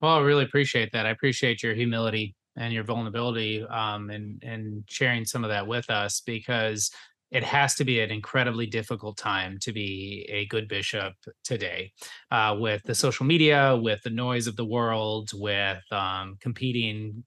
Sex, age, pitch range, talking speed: male, 20-39, 110-135 Hz, 175 wpm